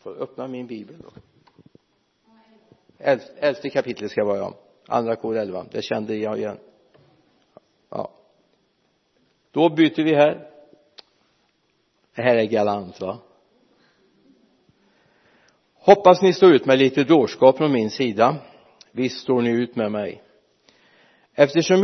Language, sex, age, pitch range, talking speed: Swedish, male, 60-79, 110-150 Hz, 120 wpm